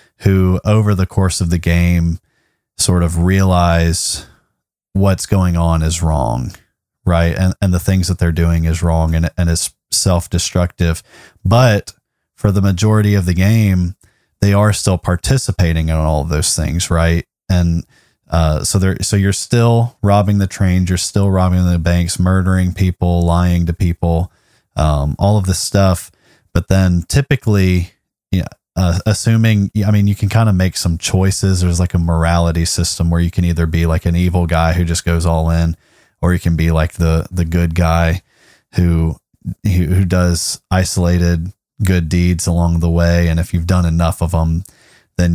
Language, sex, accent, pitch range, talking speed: English, male, American, 85-95 Hz, 175 wpm